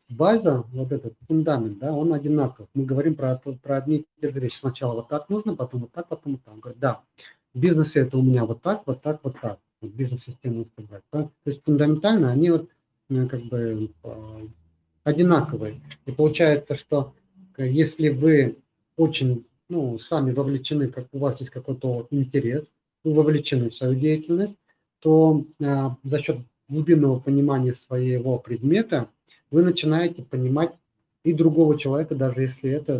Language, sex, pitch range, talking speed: Russian, male, 125-150 Hz, 160 wpm